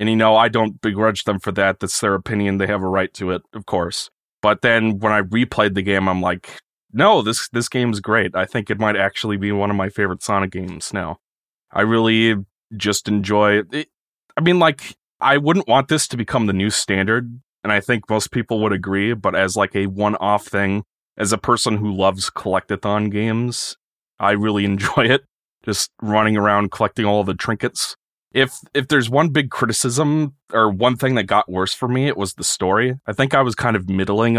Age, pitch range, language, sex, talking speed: 30-49, 100-120 Hz, English, male, 210 wpm